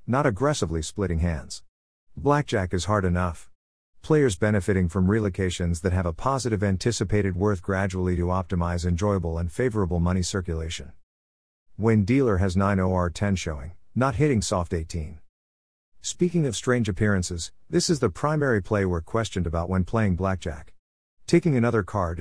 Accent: American